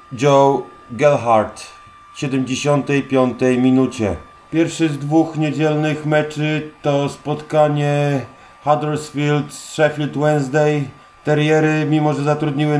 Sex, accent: male, native